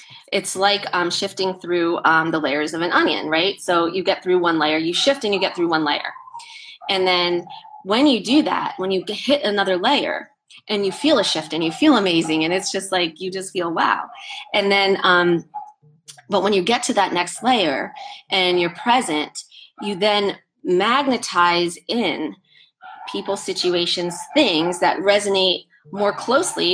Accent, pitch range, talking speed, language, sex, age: American, 175-225 Hz, 175 wpm, English, female, 30-49